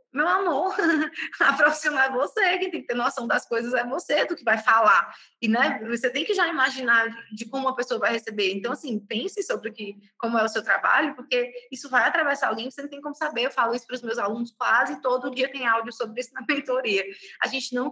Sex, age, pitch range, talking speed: female, 20-39, 215-270 Hz, 240 wpm